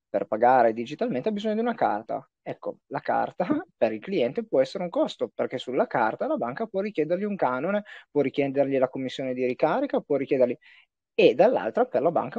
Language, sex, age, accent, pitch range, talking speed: Italian, male, 30-49, native, 130-180 Hz, 195 wpm